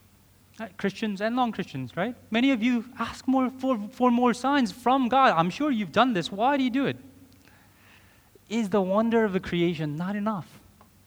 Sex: male